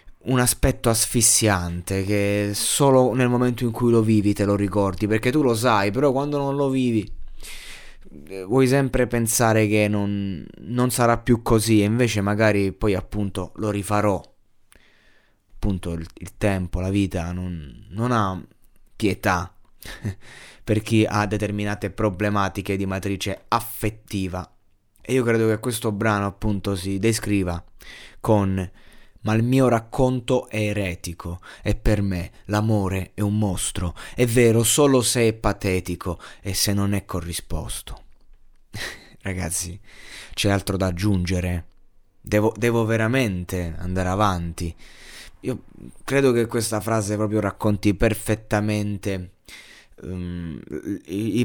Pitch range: 95-115 Hz